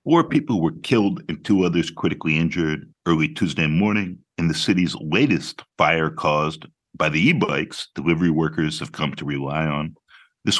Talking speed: 165 wpm